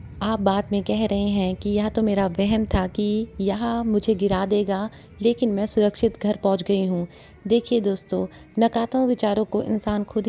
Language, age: Hindi, 30-49